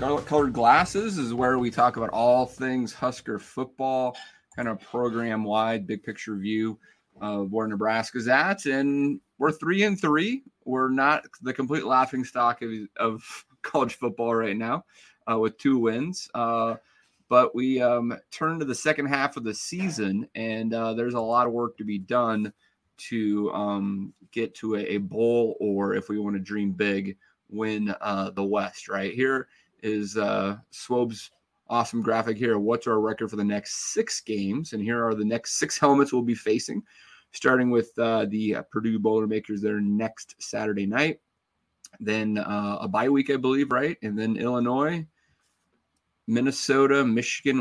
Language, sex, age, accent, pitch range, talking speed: English, male, 30-49, American, 105-130 Hz, 165 wpm